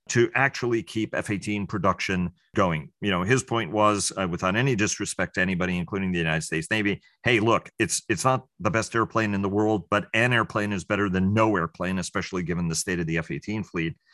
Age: 40-59